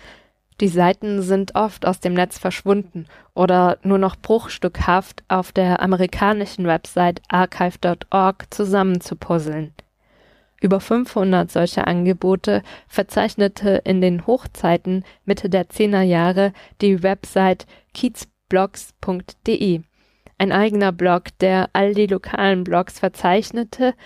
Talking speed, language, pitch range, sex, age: 105 wpm, German, 180-205 Hz, female, 20-39